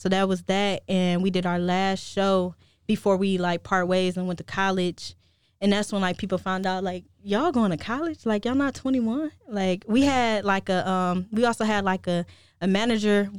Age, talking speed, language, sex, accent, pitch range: 10-29, 215 wpm, English, female, American, 180-205 Hz